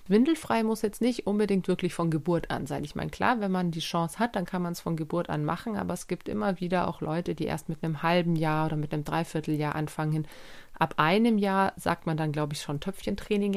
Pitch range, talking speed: 155-200 Hz, 240 wpm